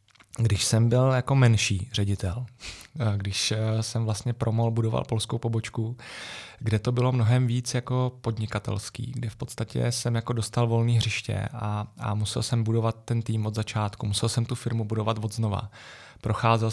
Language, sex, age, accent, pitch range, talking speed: Czech, male, 20-39, native, 110-120 Hz, 160 wpm